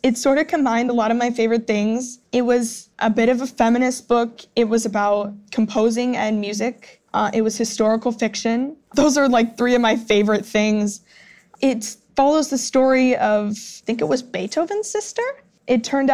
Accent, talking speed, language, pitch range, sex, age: American, 185 wpm, English, 210-250 Hz, female, 10-29